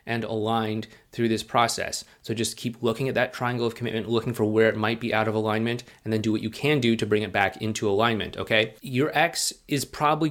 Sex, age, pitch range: male, 30-49, 105-125 Hz